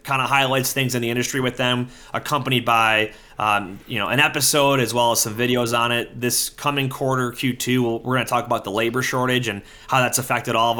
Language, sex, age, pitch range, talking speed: English, male, 20-39, 115-135 Hz, 220 wpm